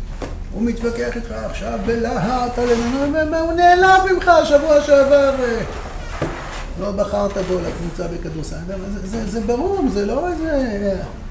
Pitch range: 150-240 Hz